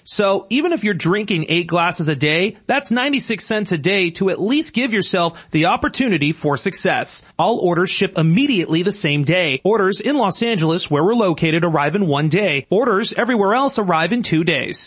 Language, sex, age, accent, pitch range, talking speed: English, male, 30-49, American, 165-225 Hz, 195 wpm